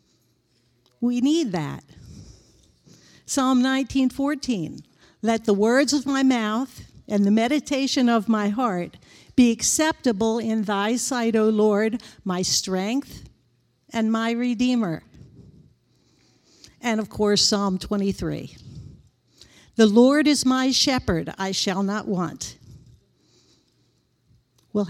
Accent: American